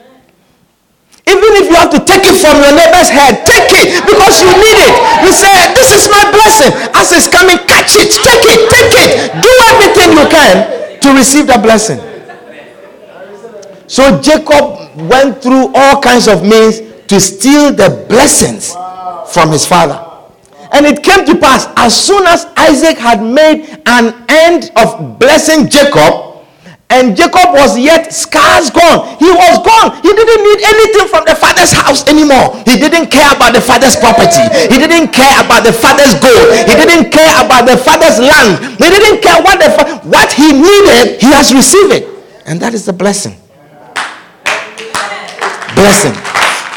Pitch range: 260-380 Hz